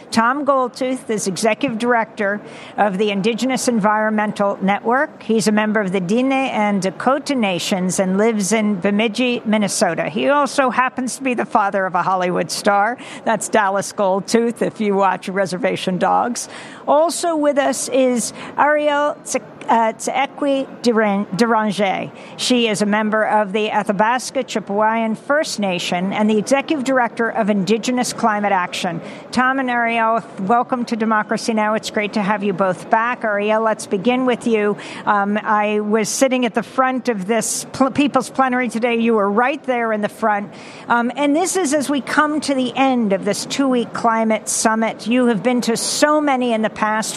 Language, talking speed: English, 170 wpm